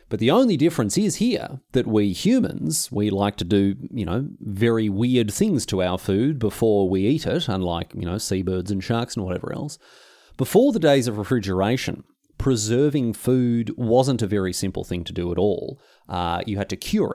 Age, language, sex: 30-49, English, male